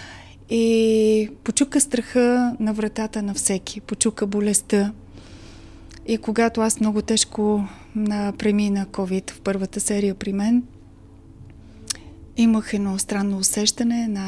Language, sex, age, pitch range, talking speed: Bulgarian, female, 30-49, 200-230 Hz, 110 wpm